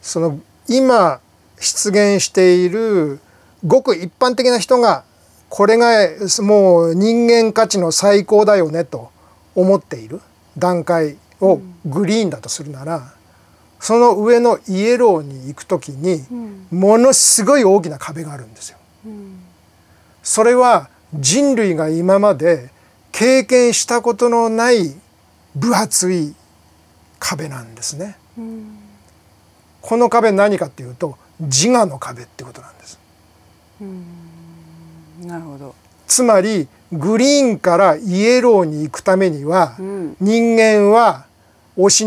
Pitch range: 145-220 Hz